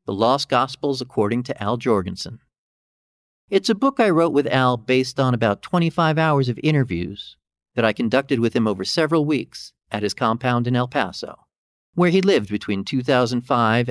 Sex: male